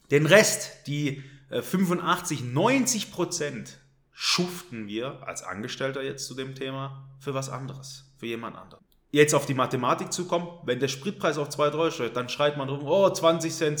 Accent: German